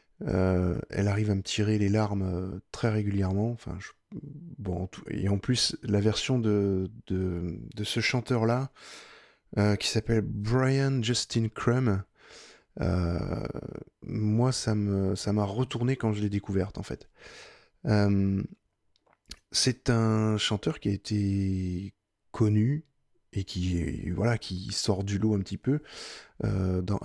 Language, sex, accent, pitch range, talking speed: French, male, French, 100-115 Hz, 140 wpm